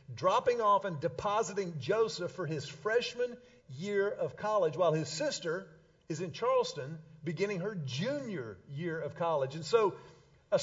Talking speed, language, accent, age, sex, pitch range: 145 wpm, English, American, 50-69, male, 175-235 Hz